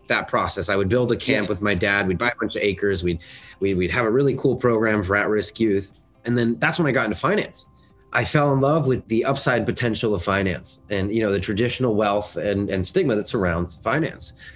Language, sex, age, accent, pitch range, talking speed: English, male, 30-49, American, 100-120 Hz, 230 wpm